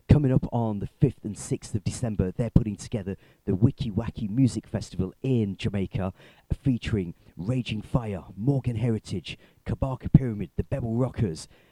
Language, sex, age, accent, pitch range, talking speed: English, male, 40-59, British, 105-130 Hz, 150 wpm